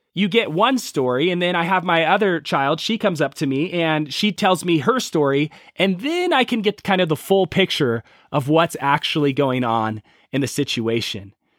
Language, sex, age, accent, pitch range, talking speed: English, male, 30-49, American, 145-195 Hz, 205 wpm